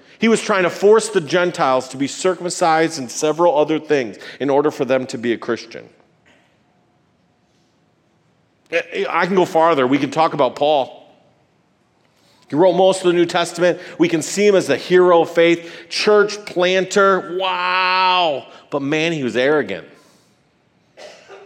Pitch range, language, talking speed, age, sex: 130-180 Hz, English, 155 wpm, 40-59, male